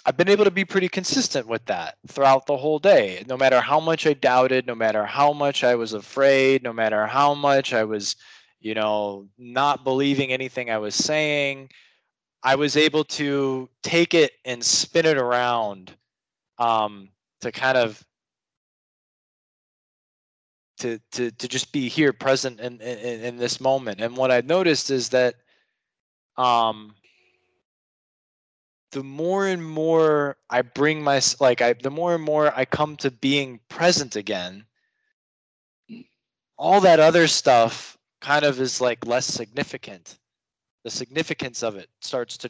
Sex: male